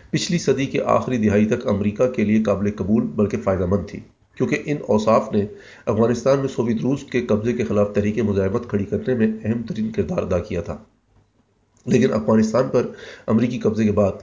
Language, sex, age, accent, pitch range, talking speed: English, male, 40-59, Indian, 105-125 Hz, 190 wpm